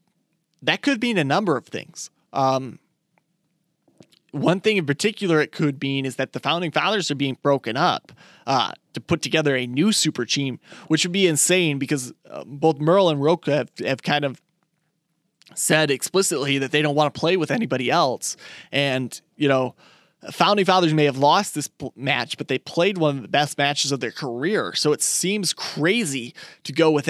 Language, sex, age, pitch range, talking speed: English, male, 20-39, 140-170 Hz, 190 wpm